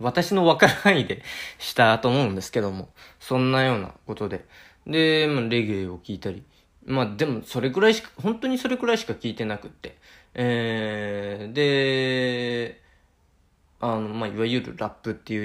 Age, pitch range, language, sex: 20-39, 100-130 Hz, Japanese, male